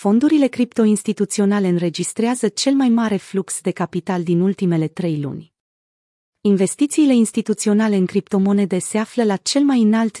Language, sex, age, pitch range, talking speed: Romanian, female, 30-49, 180-225 Hz, 140 wpm